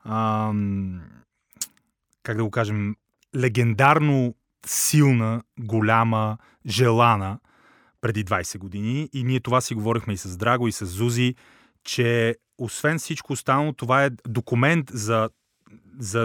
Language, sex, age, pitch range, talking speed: Bulgarian, male, 30-49, 110-145 Hz, 120 wpm